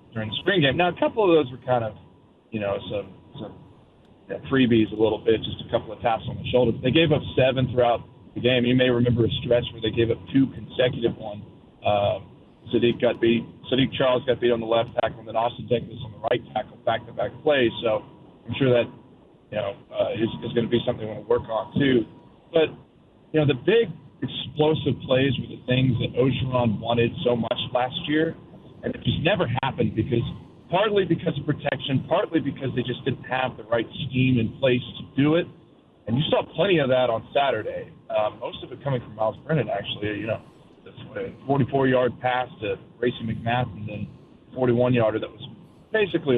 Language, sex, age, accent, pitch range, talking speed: English, male, 40-59, American, 115-140 Hz, 205 wpm